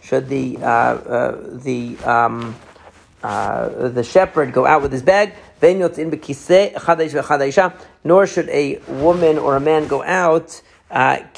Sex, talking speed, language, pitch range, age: male, 125 wpm, English, 135-165 Hz, 40-59